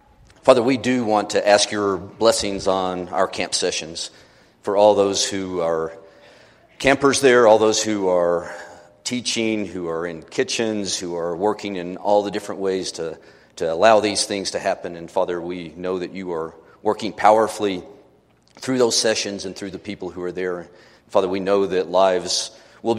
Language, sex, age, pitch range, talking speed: English, male, 40-59, 90-105 Hz, 175 wpm